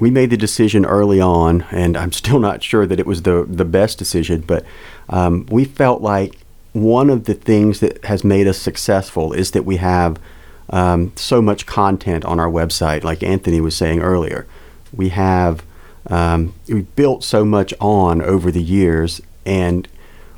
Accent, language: American, English